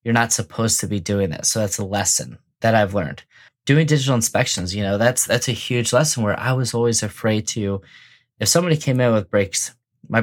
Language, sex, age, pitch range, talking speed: English, male, 20-39, 105-125 Hz, 215 wpm